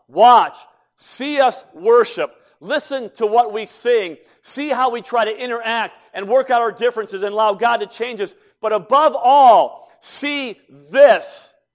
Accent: American